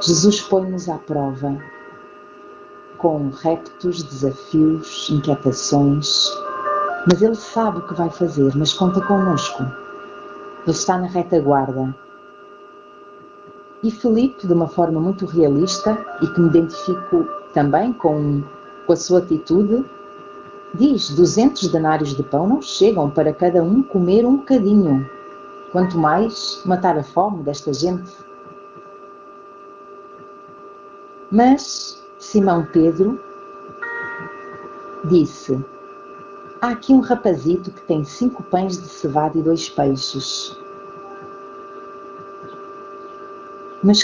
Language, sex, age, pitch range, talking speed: Portuguese, female, 40-59, 160-200 Hz, 105 wpm